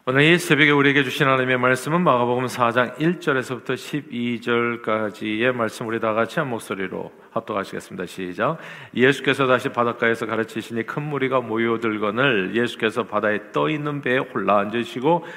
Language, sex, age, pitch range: Korean, male, 40-59, 115-145 Hz